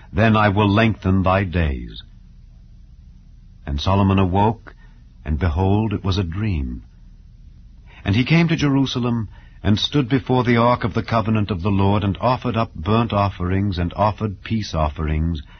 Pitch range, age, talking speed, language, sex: 90-125 Hz, 60-79, 155 wpm, English, male